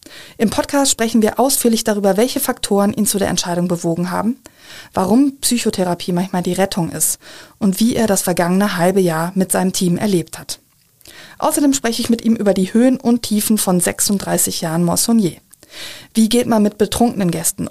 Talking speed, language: 175 wpm, German